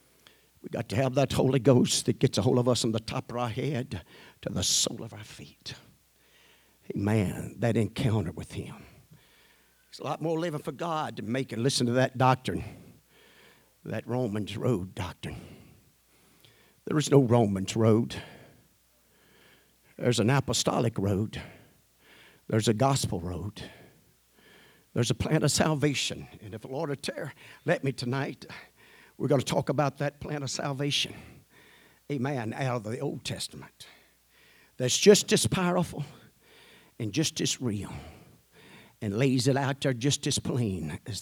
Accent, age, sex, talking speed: American, 60-79, male, 155 wpm